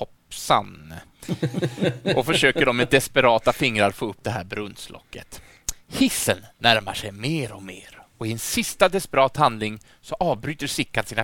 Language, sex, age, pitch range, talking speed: Swedish, male, 30-49, 110-160 Hz, 150 wpm